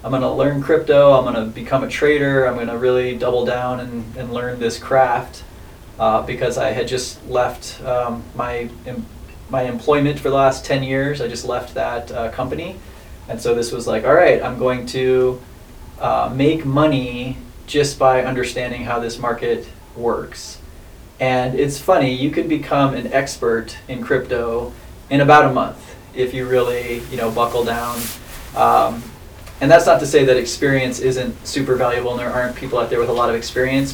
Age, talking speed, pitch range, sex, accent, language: 20-39, 185 wpm, 120-135 Hz, male, American, English